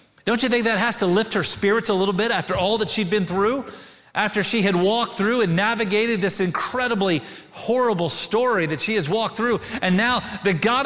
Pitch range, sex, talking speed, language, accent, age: 165-220 Hz, male, 210 wpm, English, American, 40-59